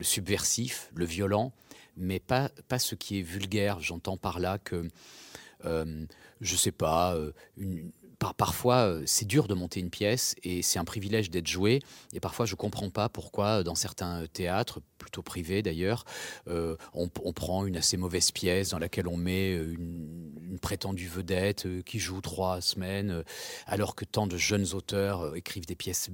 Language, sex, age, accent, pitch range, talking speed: French, male, 40-59, French, 85-100 Hz, 180 wpm